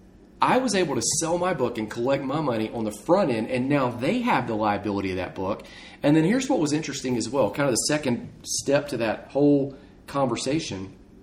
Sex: male